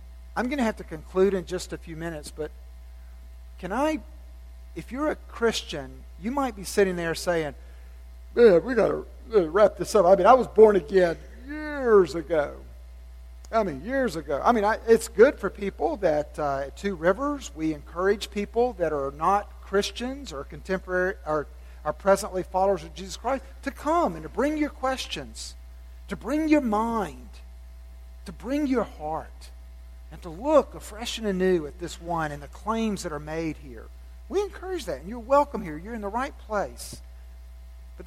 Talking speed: 180 wpm